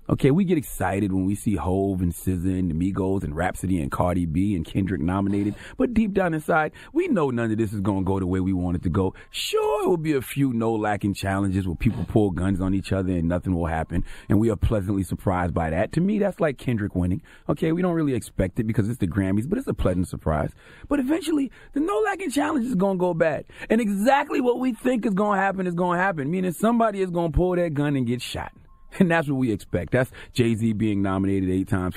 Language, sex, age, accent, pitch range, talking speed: English, male, 30-49, American, 95-155 Hz, 250 wpm